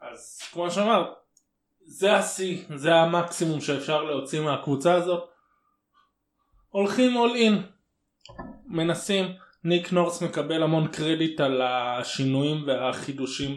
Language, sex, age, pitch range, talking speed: Hebrew, male, 20-39, 135-185 Hz, 100 wpm